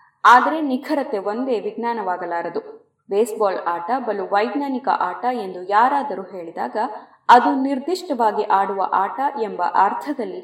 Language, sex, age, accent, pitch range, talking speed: Kannada, female, 20-39, native, 195-260 Hz, 105 wpm